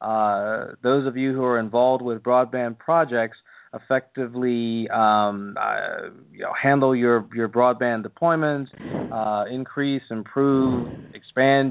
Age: 30-49